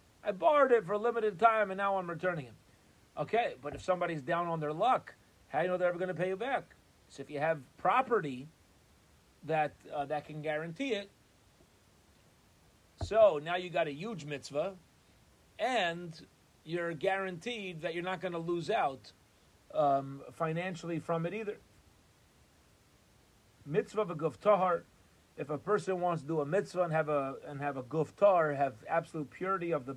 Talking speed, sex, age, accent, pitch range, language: 170 wpm, male, 30-49, American, 145-185 Hz, English